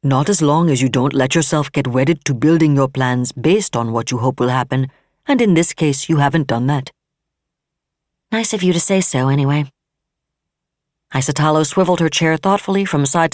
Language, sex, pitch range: English, female, 140-180 Hz